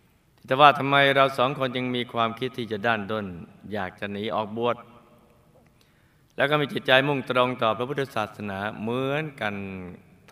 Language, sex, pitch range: Thai, male, 105-130 Hz